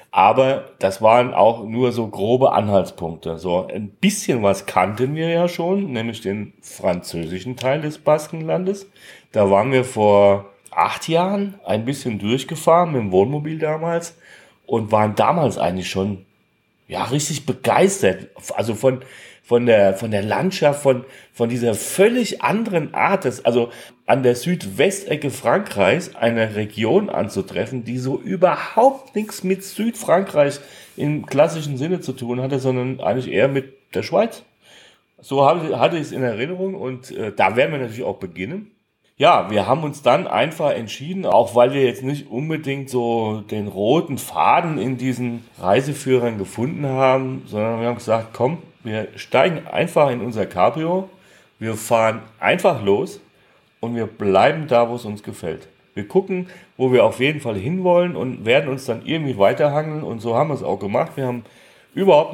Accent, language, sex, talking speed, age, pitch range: German, German, male, 160 wpm, 40-59, 115-155 Hz